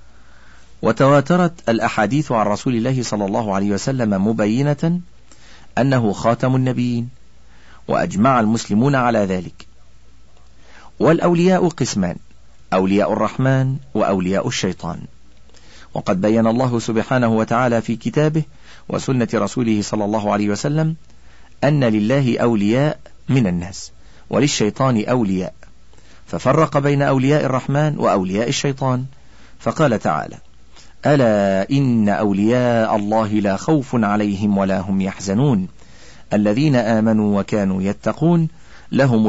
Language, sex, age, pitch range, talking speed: Arabic, male, 40-59, 95-130 Hz, 100 wpm